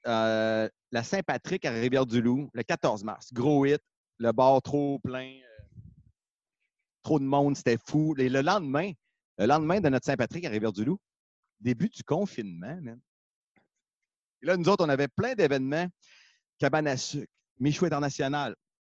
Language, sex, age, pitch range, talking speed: French, male, 40-59, 130-180 Hz, 150 wpm